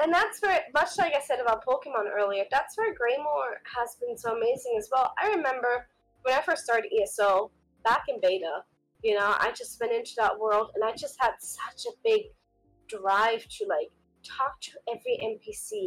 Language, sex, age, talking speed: English, female, 20-39, 195 wpm